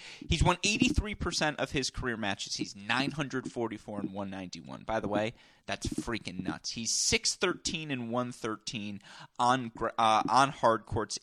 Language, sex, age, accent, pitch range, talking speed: English, male, 30-49, American, 105-125 Hz, 140 wpm